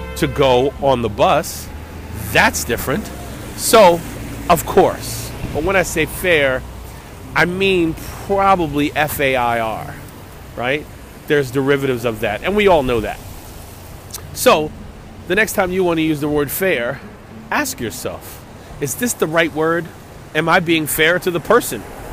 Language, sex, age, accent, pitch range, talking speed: English, male, 40-59, American, 105-165 Hz, 145 wpm